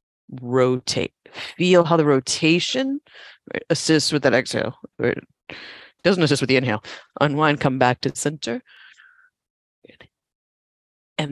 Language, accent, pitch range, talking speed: English, American, 130-190 Hz, 105 wpm